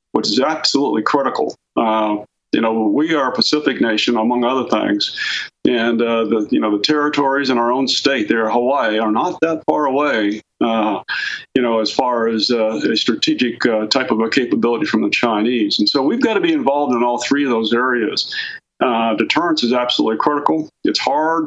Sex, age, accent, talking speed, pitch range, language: male, 40-59, American, 195 wpm, 110-135 Hz, English